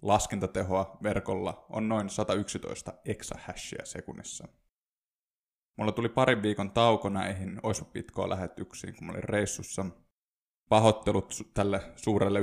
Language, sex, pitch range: Finnish, male, 95-110 Hz